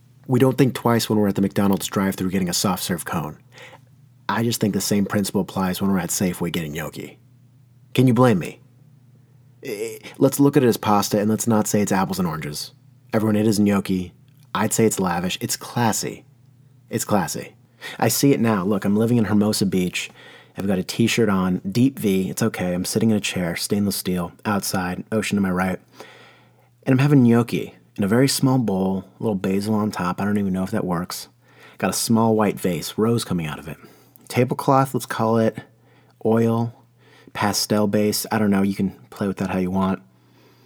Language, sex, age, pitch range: English, male, 30-49, 100-125 Hz